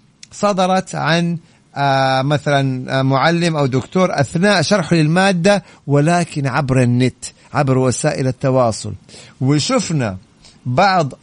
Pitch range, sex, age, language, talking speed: 135-165 Hz, male, 50-69, Arabic, 90 wpm